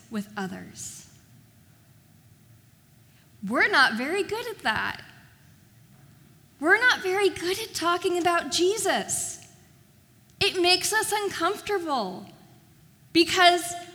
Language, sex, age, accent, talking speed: English, female, 10-29, American, 90 wpm